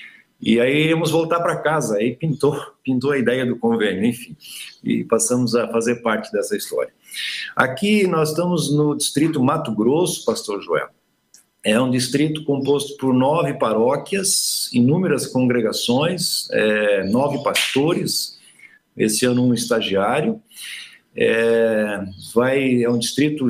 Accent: Brazilian